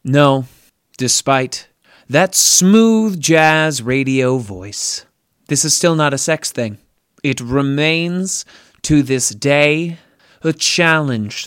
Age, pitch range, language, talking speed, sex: 30-49, 120-160 Hz, English, 110 wpm, male